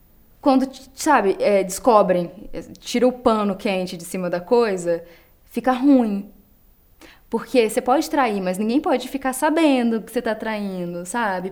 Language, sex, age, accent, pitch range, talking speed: Portuguese, female, 10-29, Brazilian, 190-250 Hz, 145 wpm